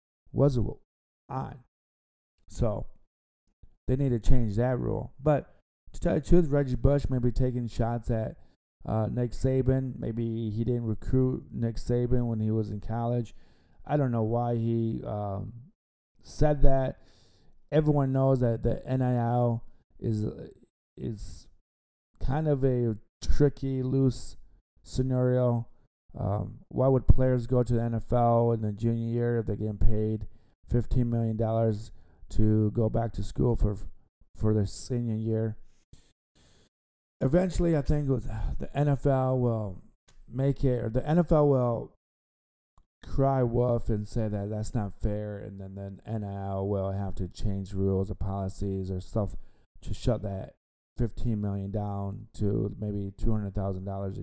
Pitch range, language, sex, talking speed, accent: 100-125 Hz, English, male, 140 wpm, American